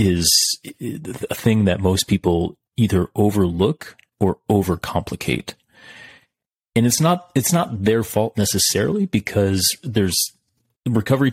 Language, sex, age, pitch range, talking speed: English, male, 30-49, 90-110 Hz, 110 wpm